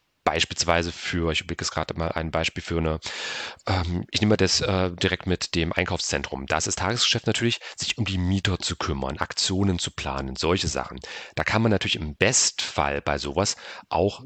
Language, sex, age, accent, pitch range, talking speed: German, male, 40-59, German, 85-100 Hz, 190 wpm